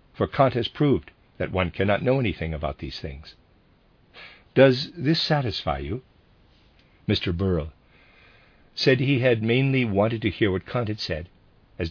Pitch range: 85-115 Hz